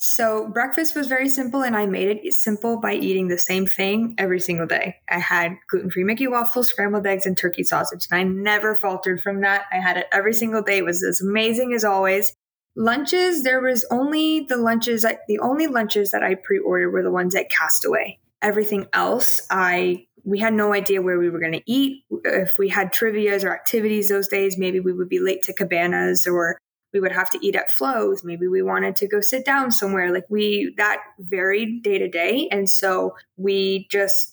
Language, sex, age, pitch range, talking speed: English, female, 20-39, 185-230 Hz, 210 wpm